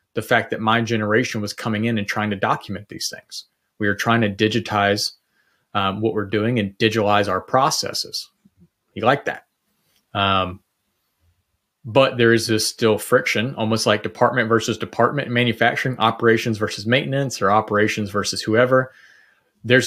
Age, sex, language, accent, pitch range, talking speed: 30-49, male, German, American, 105-125 Hz, 155 wpm